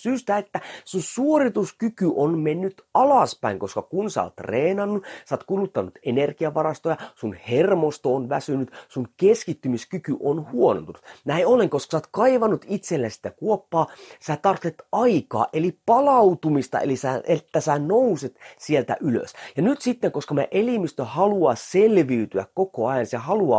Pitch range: 145-215 Hz